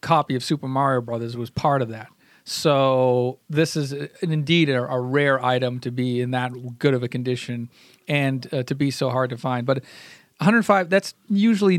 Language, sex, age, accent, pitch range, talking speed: English, male, 40-59, American, 125-155 Hz, 195 wpm